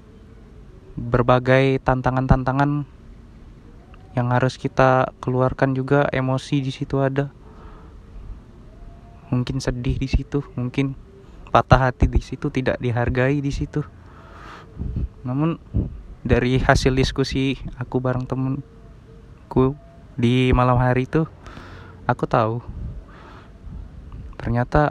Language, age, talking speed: Indonesian, 20-39, 90 wpm